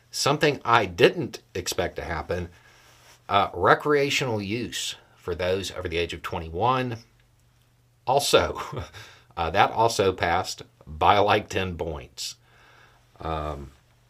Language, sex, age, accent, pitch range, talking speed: English, male, 50-69, American, 95-120 Hz, 110 wpm